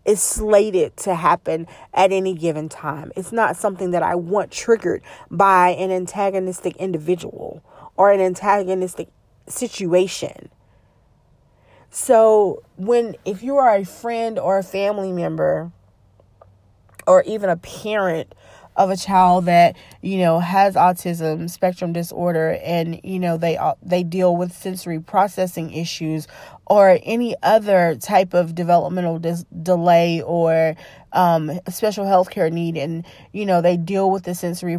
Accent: American